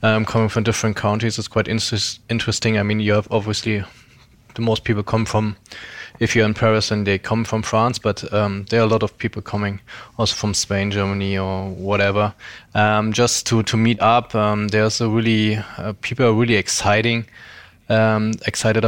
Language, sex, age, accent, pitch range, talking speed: English, male, 20-39, German, 105-110 Hz, 190 wpm